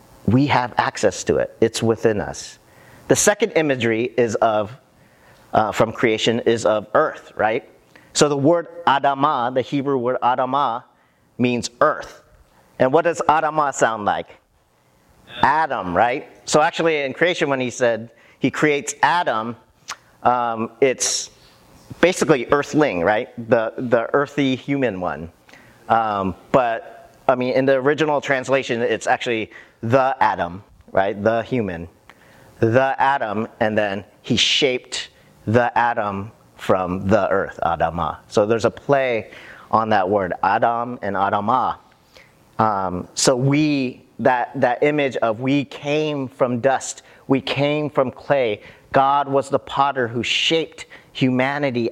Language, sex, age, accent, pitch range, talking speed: English, male, 40-59, American, 110-140 Hz, 135 wpm